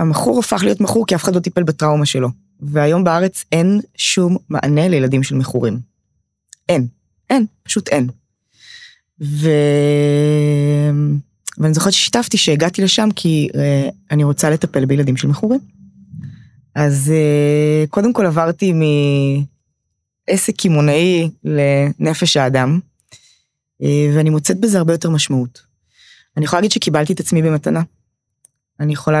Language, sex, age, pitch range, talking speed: Hebrew, female, 20-39, 140-185 Hz, 120 wpm